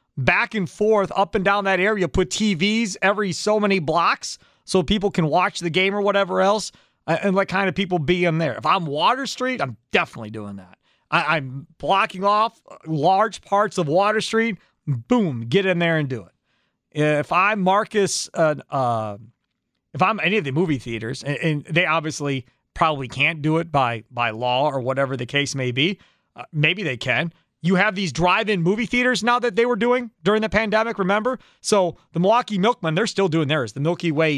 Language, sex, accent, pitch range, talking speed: English, male, American, 155-220 Hz, 195 wpm